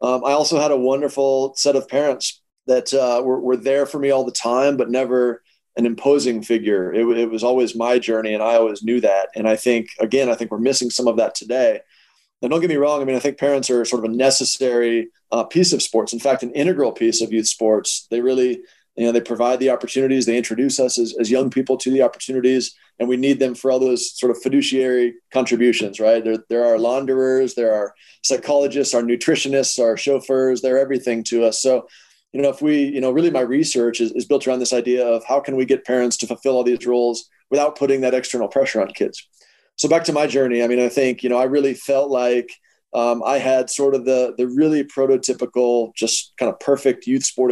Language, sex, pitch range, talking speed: English, male, 120-135 Hz, 230 wpm